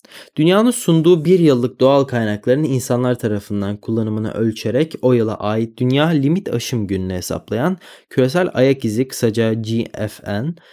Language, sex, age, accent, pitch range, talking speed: Turkish, male, 20-39, native, 110-155 Hz, 130 wpm